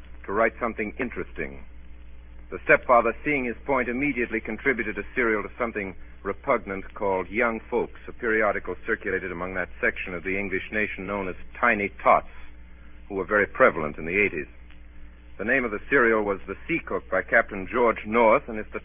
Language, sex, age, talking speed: English, male, 50-69, 180 wpm